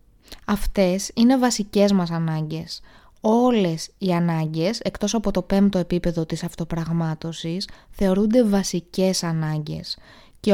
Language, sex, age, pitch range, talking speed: Greek, female, 20-39, 170-215 Hz, 110 wpm